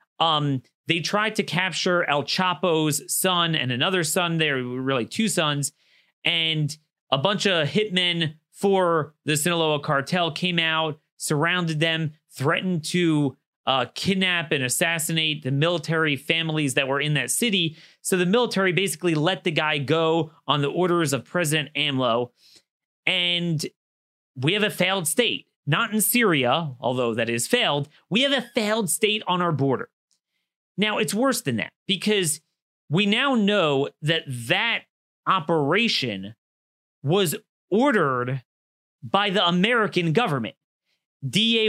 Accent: American